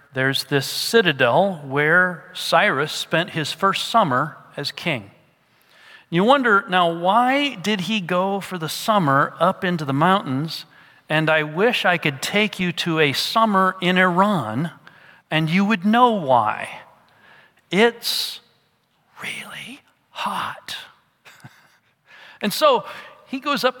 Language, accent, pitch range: English, American, 165-230 Hz